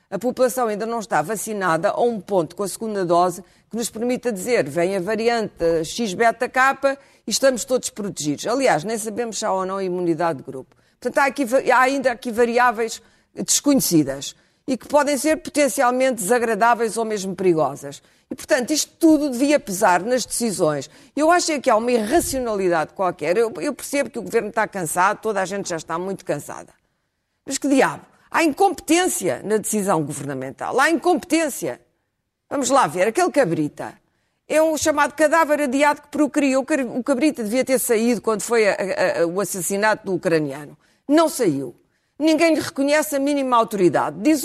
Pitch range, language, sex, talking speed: 190-285 Hz, Portuguese, female, 165 wpm